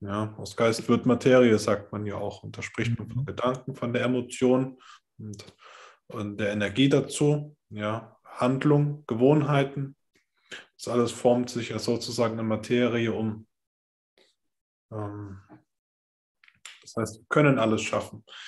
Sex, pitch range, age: male, 105-130 Hz, 20-39